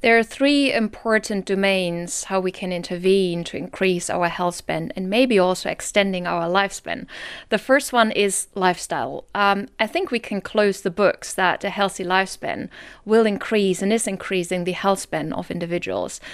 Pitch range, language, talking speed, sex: 185-215 Hz, English, 175 wpm, female